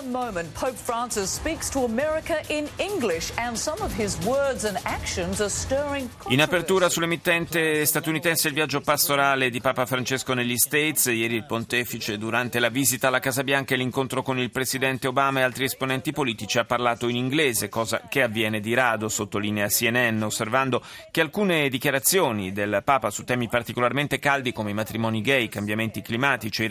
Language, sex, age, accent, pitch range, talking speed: Italian, male, 40-59, native, 115-150 Hz, 135 wpm